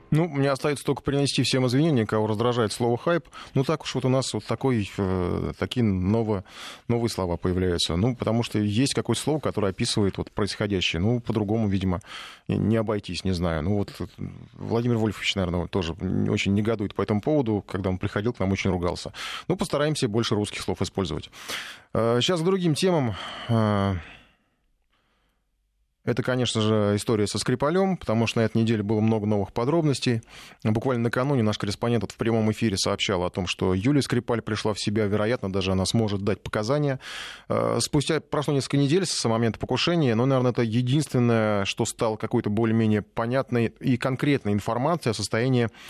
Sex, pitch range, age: male, 100-130 Hz, 20-39